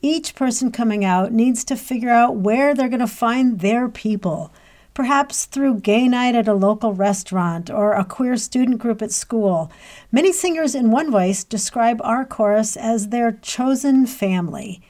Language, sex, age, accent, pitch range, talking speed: English, female, 50-69, American, 200-255 Hz, 170 wpm